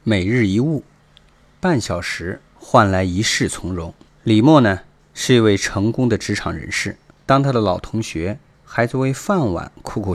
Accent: native